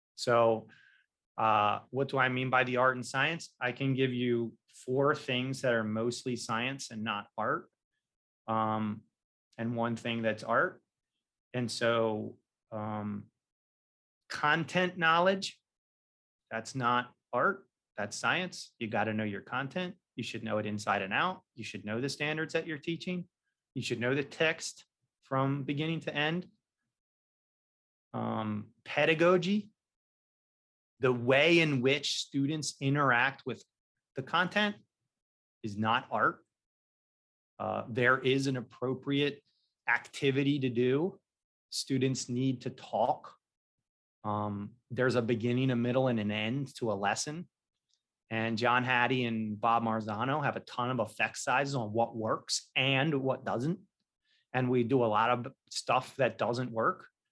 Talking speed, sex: 140 wpm, male